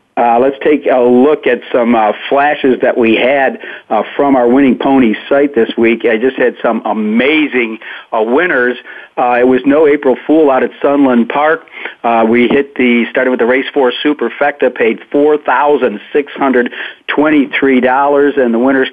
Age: 50-69